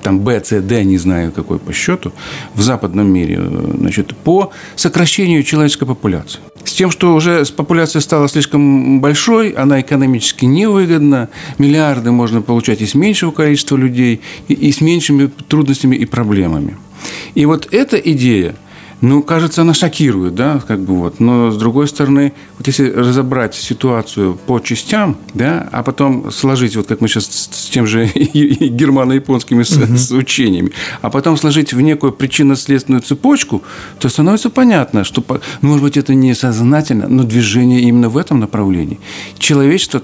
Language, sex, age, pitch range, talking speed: Russian, male, 50-69, 110-145 Hz, 150 wpm